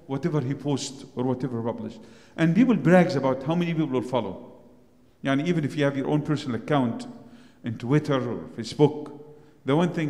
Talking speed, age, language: 190 wpm, 50-69, English